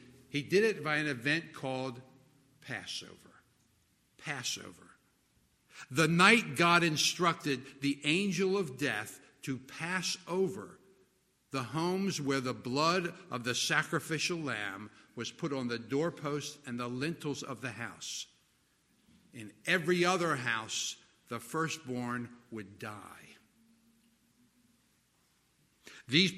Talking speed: 110 wpm